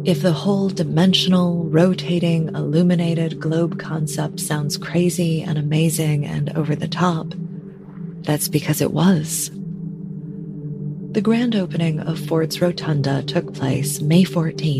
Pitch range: 155-180 Hz